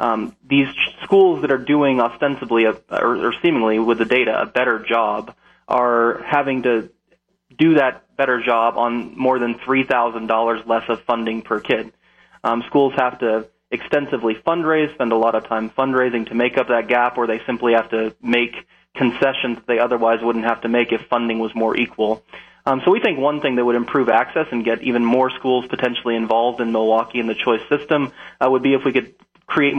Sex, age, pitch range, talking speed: male, 20-39, 115-135 Hz, 195 wpm